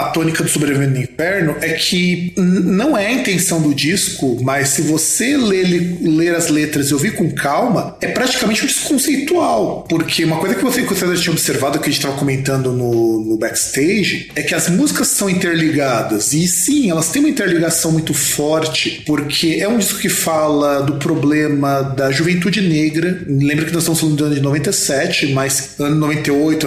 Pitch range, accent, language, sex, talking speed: 150-195 Hz, Brazilian, Portuguese, male, 190 wpm